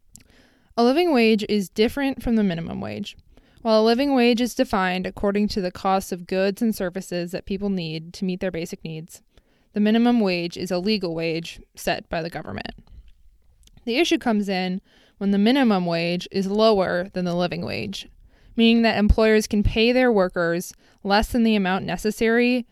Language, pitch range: English, 180-225 Hz